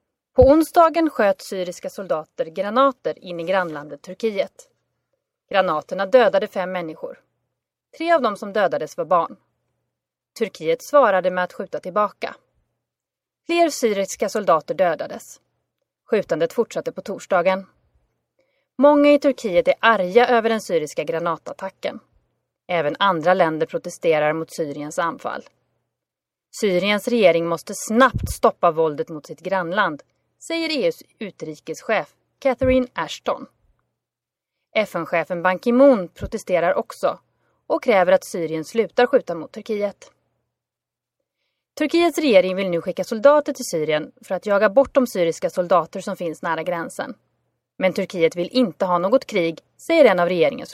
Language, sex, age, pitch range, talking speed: Swedish, female, 30-49, 170-255 Hz, 130 wpm